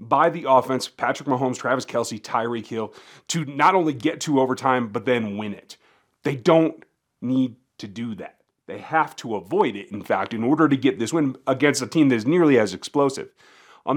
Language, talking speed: English, 200 wpm